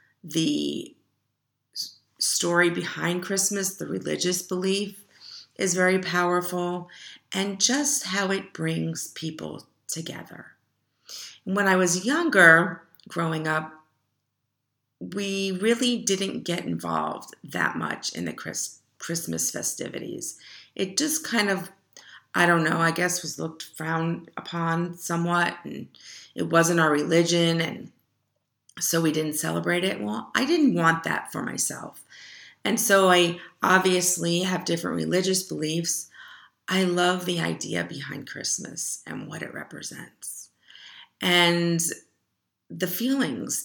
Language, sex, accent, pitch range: English, female, American, 160-190 Hz